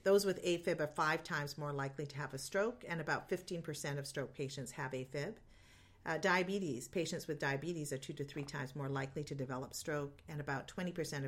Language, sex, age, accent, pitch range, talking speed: English, female, 40-59, American, 135-165 Hz, 200 wpm